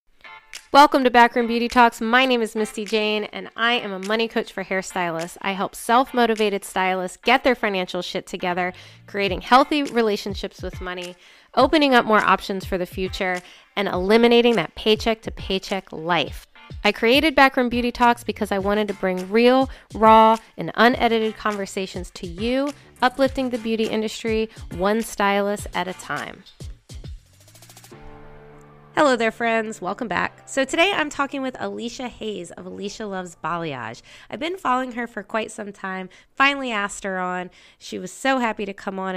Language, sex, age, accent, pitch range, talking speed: English, female, 20-39, American, 190-245 Hz, 165 wpm